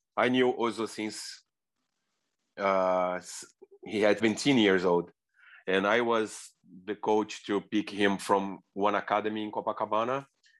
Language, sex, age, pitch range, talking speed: English, male, 30-49, 105-145 Hz, 130 wpm